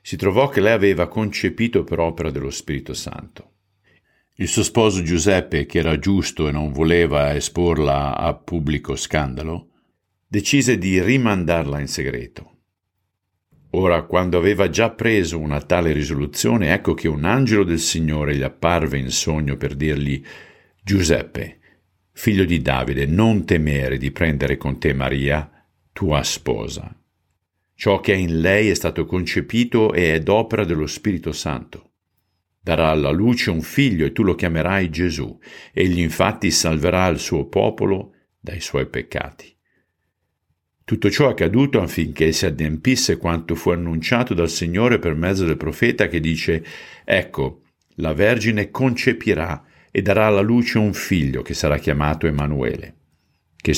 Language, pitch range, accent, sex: Italian, 75-100 Hz, native, male